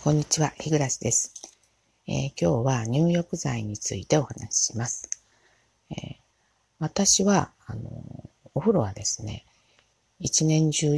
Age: 40-59